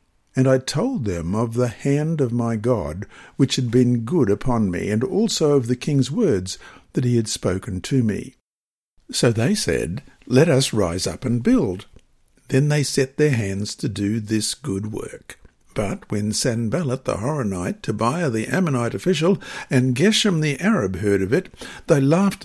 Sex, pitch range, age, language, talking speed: male, 105-150 Hz, 60-79, English, 175 wpm